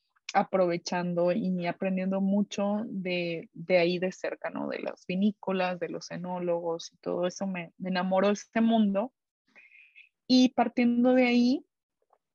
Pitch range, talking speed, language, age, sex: 180-220 Hz, 135 wpm, Spanish, 20-39, female